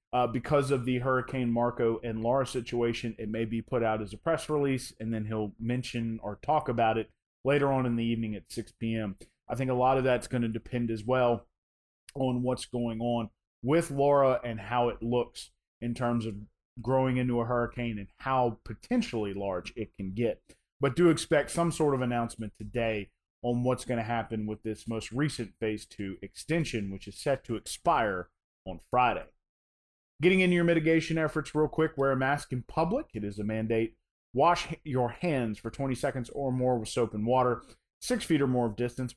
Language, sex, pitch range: English, male, 110-135 Hz